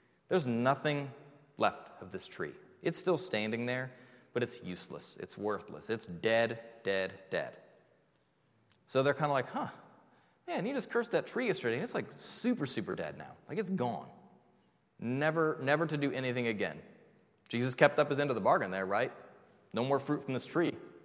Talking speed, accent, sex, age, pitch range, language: 180 wpm, American, male, 30-49, 110-145 Hz, English